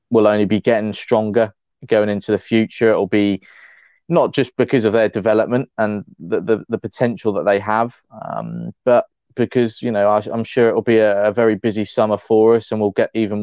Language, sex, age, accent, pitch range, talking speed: English, male, 20-39, British, 105-120 Hz, 205 wpm